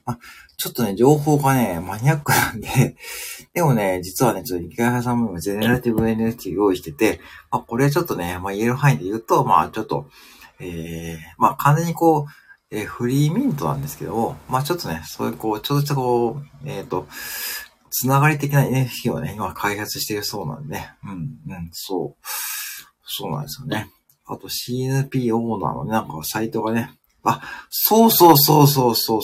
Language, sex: Japanese, male